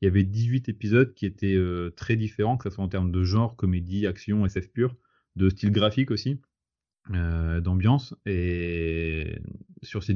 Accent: French